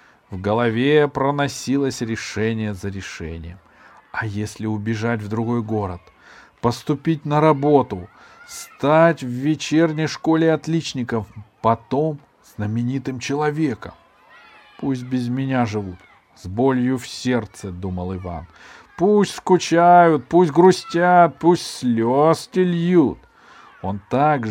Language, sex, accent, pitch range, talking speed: Russian, male, native, 105-155 Hz, 105 wpm